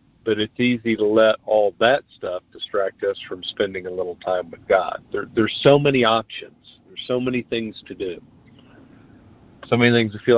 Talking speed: 185 wpm